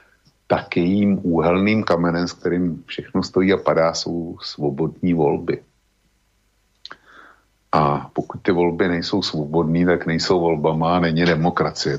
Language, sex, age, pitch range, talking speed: Slovak, male, 50-69, 80-90 Hz, 120 wpm